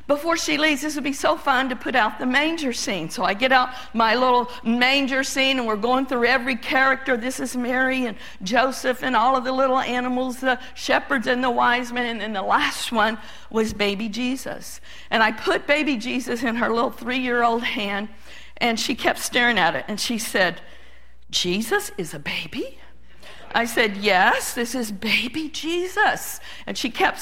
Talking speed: 190 wpm